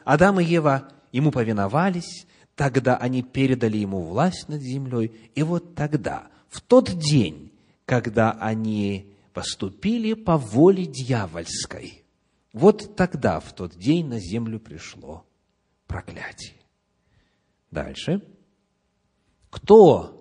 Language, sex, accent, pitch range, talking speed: Russian, male, native, 115-180 Hz, 105 wpm